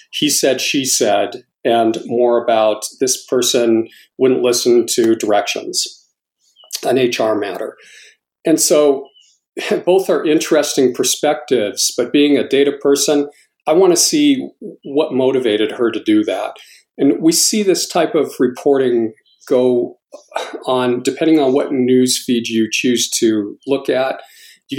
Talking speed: 140 wpm